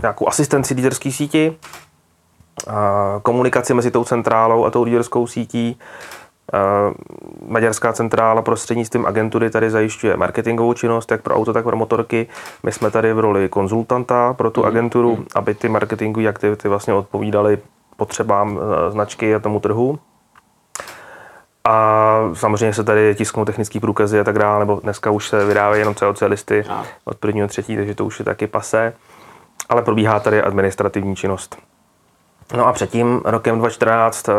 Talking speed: 145 wpm